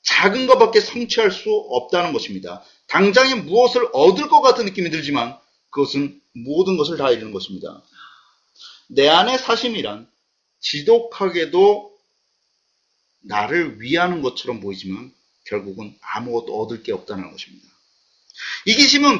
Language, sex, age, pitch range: Korean, male, 30-49, 180-270 Hz